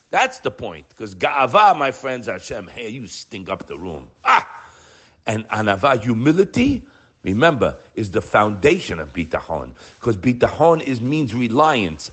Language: English